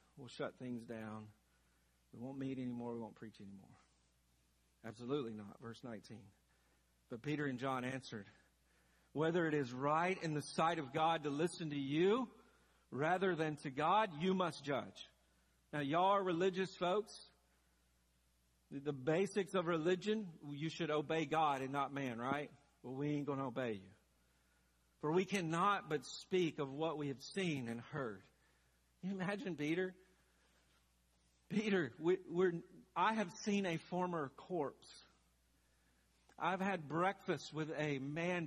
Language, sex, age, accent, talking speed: English, male, 50-69, American, 145 wpm